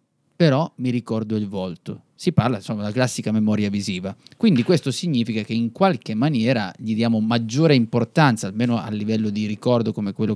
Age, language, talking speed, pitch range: 30-49, Italian, 175 wpm, 110-130 Hz